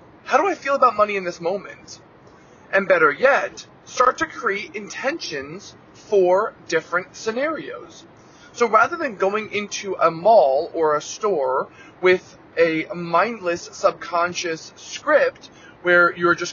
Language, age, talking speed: English, 20-39, 135 wpm